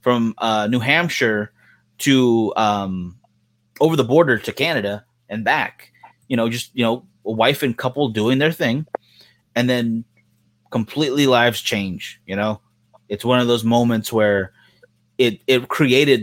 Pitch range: 110-130 Hz